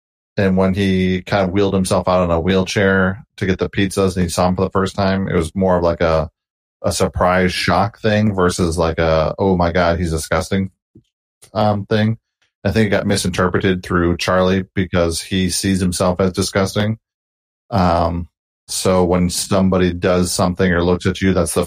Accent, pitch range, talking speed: American, 85-95 Hz, 190 wpm